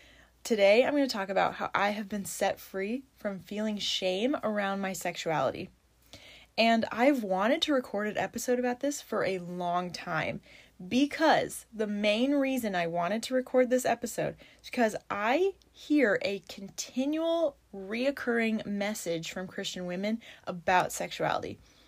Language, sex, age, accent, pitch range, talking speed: English, female, 20-39, American, 185-240 Hz, 150 wpm